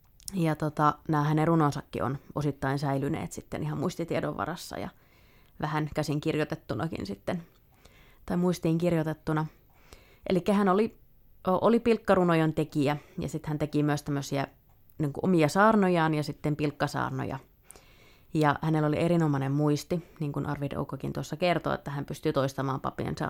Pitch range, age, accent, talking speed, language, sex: 140-160 Hz, 20-39, native, 140 wpm, Finnish, female